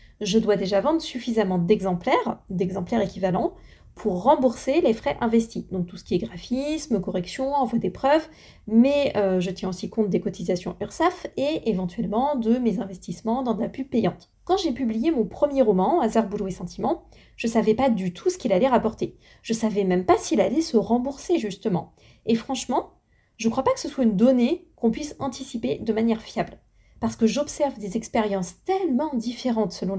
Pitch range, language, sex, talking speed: 210-280 Hz, French, female, 190 wpm